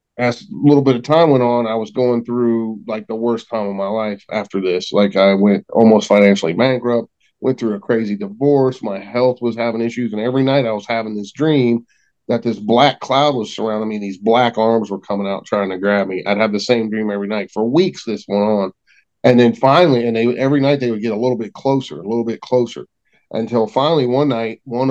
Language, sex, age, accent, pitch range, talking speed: English, male, 40-59, American, 105-125 Hz, 235 wpm